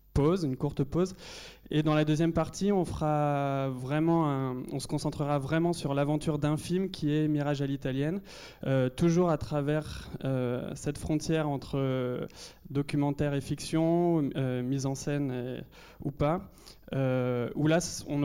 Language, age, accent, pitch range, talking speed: French, 20-39, French, 130-155 Hz, 160 wpm